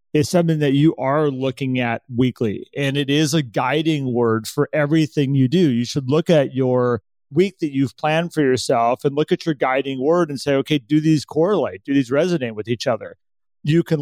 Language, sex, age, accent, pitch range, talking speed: English, male, 40-59, American, 135-165 Hz, 210 wpm